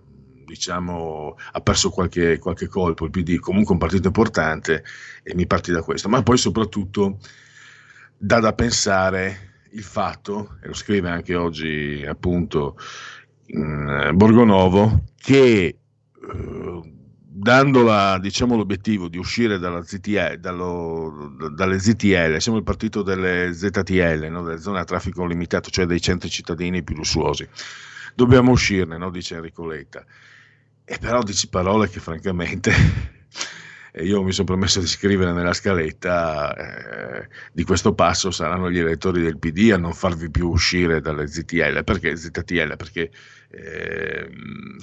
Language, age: Italian, 50-69